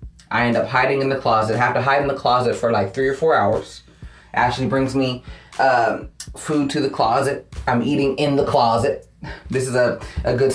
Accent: American